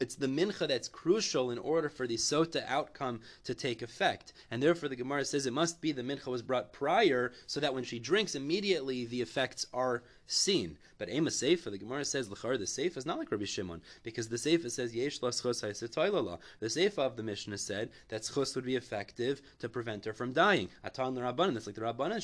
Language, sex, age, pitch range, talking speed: English, male, 20-39, 115-155 Hz, 215 wpm